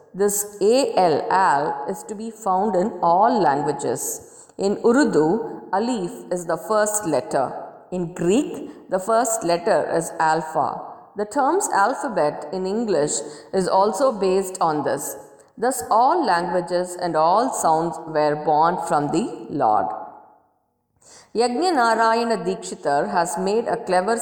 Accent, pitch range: Indian, 170-220 Hz